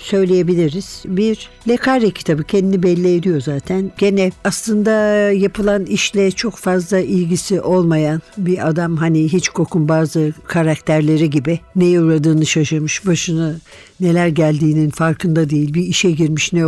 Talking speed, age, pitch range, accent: 130 wpm, 60-79, 155-190 Hz, native